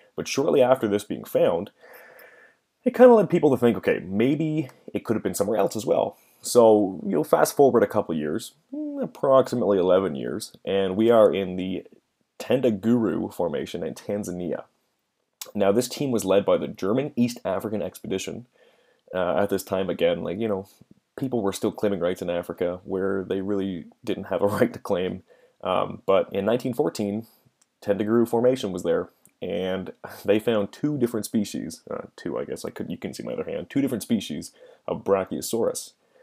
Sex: male